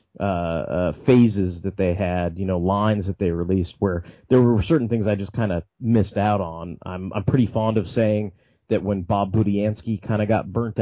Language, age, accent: English, 30-49, American